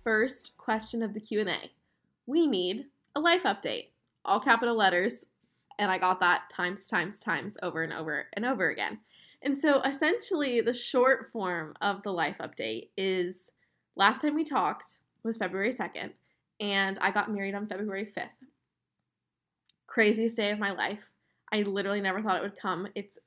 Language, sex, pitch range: English, female, 195-245 Hz